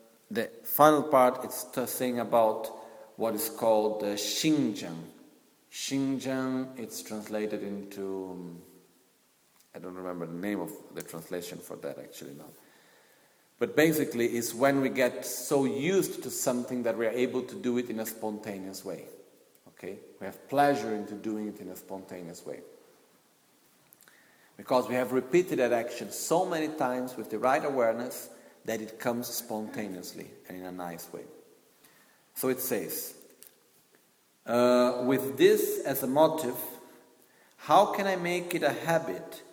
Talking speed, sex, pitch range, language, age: 150 wpm, male, 105-130 Hz, Italian, 40-59